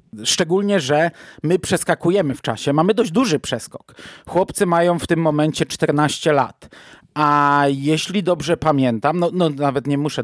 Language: Polish